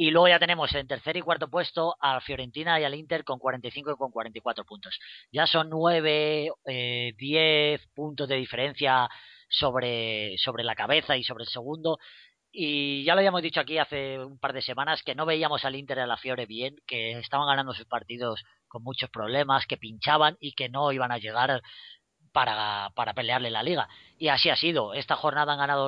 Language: Spanish